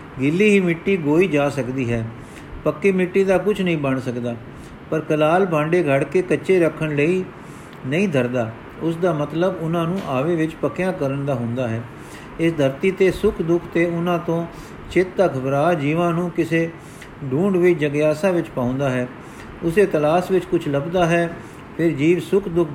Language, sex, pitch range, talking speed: Punjabi, male, 145-175 Hz, 165 wpm